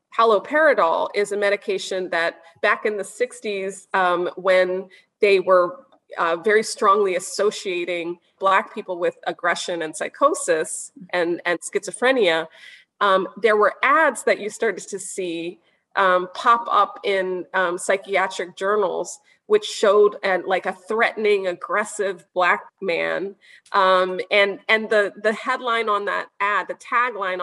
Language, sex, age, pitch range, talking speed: English, female, 30-49, 190-250 Hz, 135 wpm